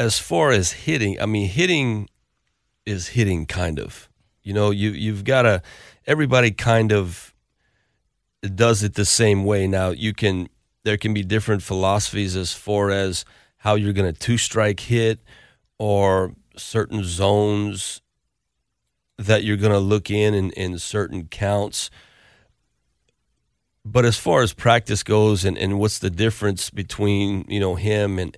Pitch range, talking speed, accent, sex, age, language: 90-105 Hz, 145 wpm, American, male, 40-59, English